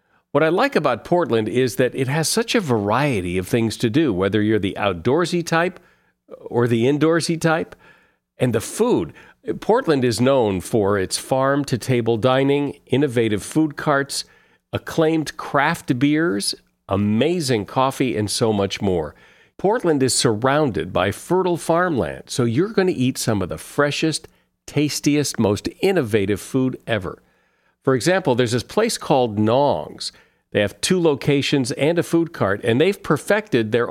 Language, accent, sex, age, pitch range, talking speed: English, American, male, 50-69, 115-160 Hz, 150 wpm